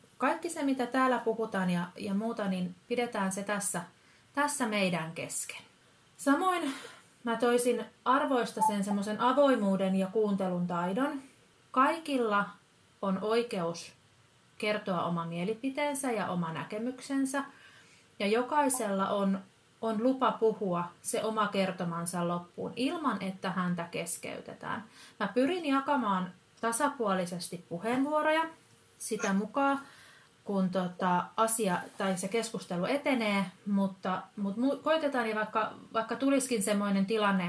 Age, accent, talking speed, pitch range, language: 30-49, native, 110 wpm, 185-240 Hz, Finnish